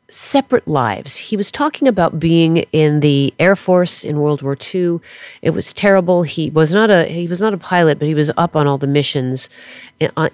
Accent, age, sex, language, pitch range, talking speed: American, 40-59, female, English, 140-195 Hz, 210 wpm